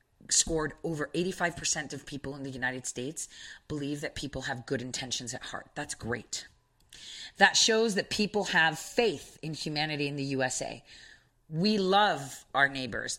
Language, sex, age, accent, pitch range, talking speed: English, female, 30-49, American, 155-200 Hz, 155 wpm